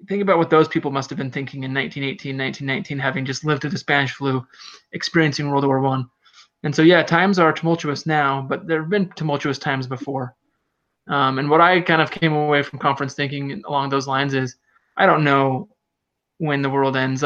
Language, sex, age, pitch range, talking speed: English, male, 20-39, 135-155 Hz, 205 wpm